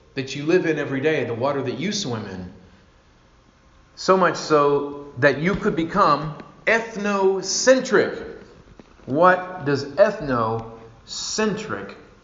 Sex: male